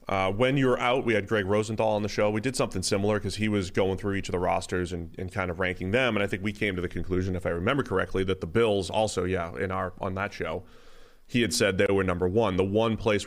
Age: 30-49